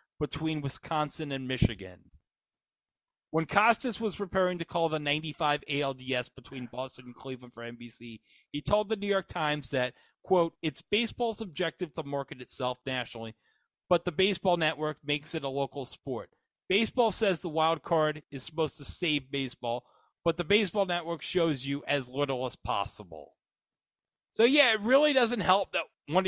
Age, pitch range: 30-49, 125-170 Hz